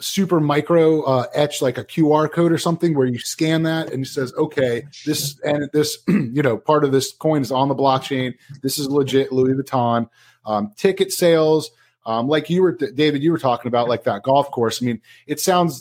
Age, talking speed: 30-49, 215 wpm